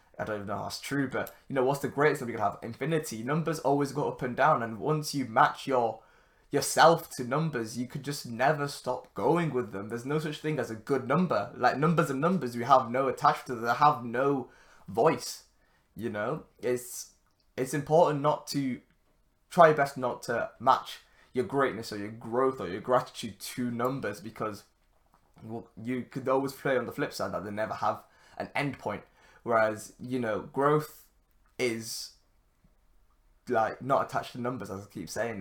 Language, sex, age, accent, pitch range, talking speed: English, male, 20-39, British, 115-140 Hz, 195 wpm